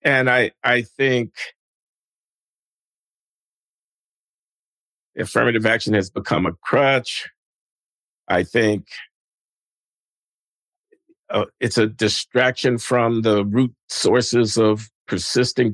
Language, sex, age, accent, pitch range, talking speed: English, male, 50-69, American, 110-125 Hz, 85 wpm